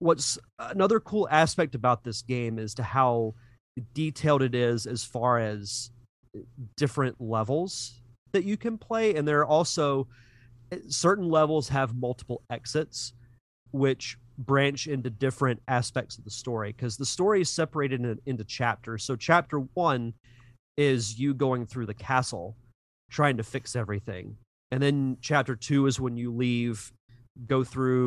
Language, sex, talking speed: English, male, 150 wpm